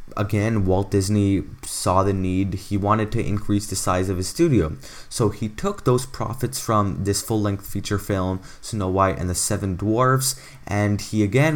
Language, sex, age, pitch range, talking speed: English, male, 20-39, 90-110 Hz, 175 wpm